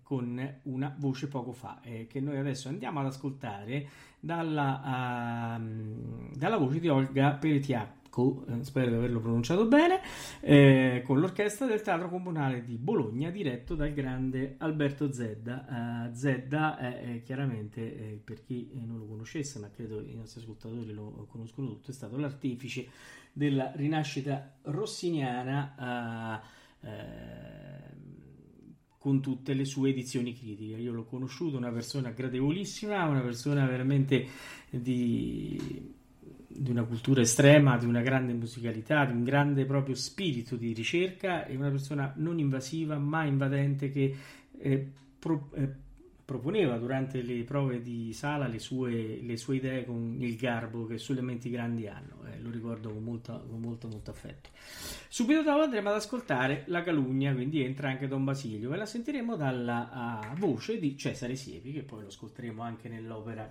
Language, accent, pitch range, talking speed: Italian, native, 120-145 Hz, 150 wpm